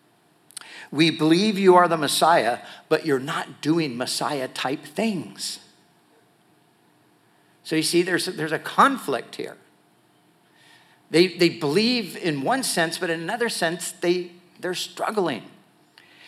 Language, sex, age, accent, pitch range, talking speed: English, male, 50-69, American, 160-195 Hz, 120 wpm